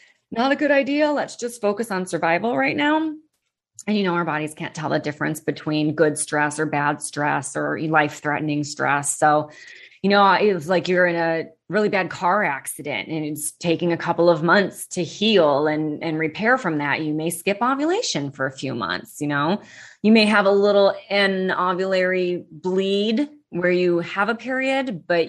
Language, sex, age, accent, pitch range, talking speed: English, female, 30-49, American, 155-195 Hz, 190 wpm